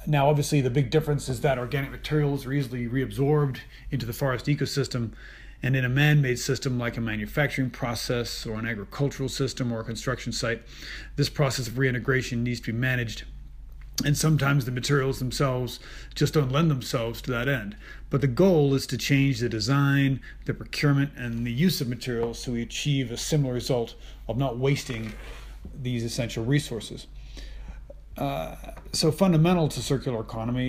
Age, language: 40-59, English